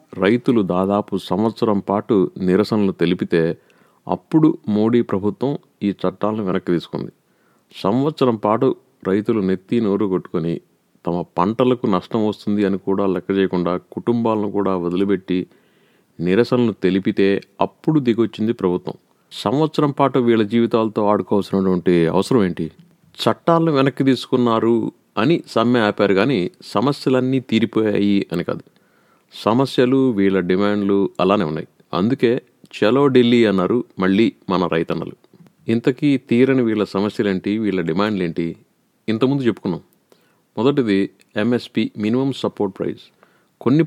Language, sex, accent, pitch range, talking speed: Telugu, male, native, 95-120 Hz, 110 wpm